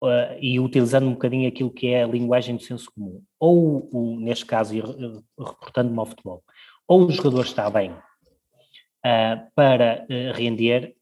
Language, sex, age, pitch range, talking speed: Portuguese, male, 20-39, 115-135 Hz, 140 wpm